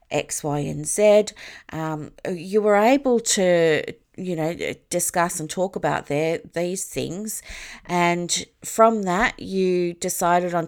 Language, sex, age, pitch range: English, female, 30-49, 160-205 Hz